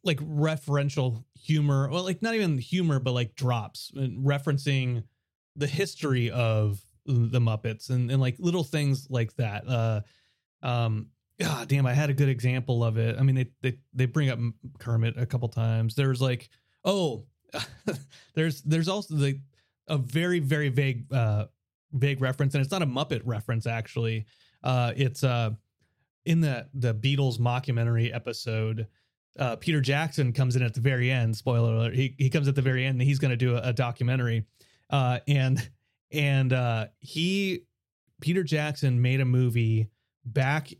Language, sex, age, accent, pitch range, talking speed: English, male, 30-49, American, 120-145 Hz, 170 wpm